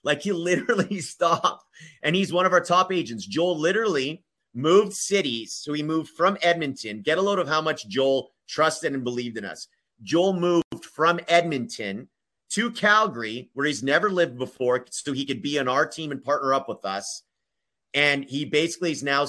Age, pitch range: 30-49, 130-170 Hz